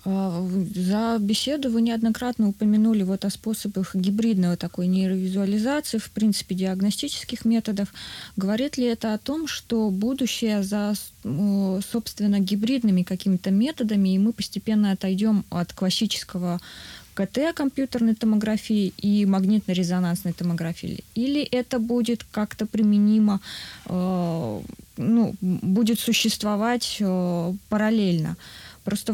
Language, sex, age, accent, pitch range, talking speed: Russian, female, 20-39, native, 190-225 Hz, 100 wpm